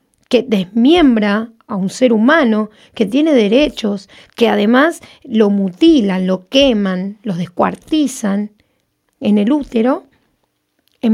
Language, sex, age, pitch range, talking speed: Spanish, female, 40-59, 200-255 Hz, 115 wpm